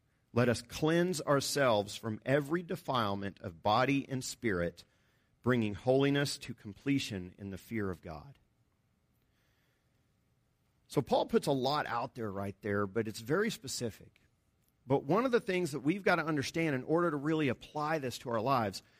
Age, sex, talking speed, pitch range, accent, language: 50-69, male, 165 wpm, 120-175 Hz, American, English